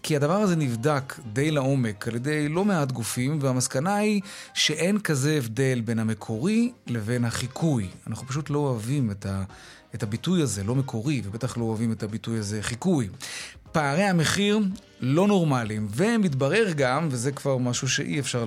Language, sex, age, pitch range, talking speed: Hebrew, male, 30-49, 125-170 Hz, 155 wpm